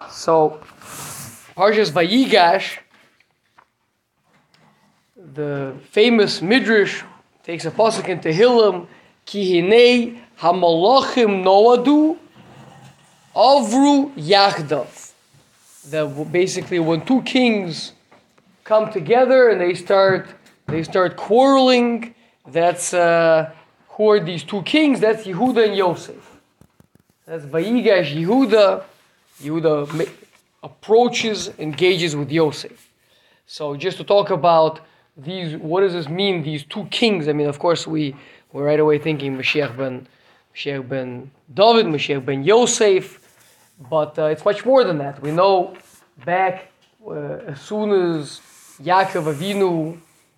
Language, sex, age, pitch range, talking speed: English, male, 20-39, 155-205 Hz, 110 wpm